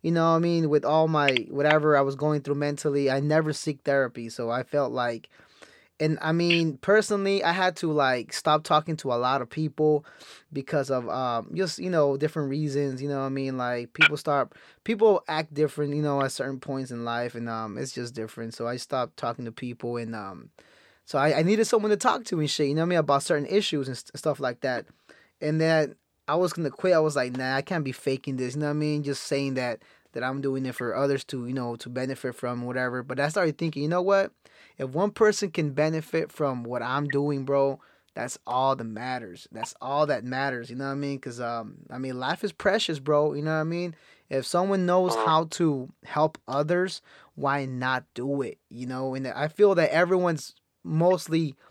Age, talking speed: 20-39, 230 wpm